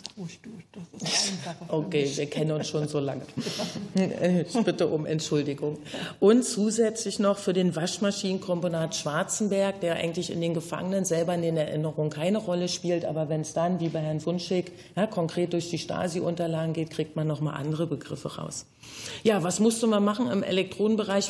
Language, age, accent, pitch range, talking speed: German, 40-59, German, 160-185 Hz, 165 wpm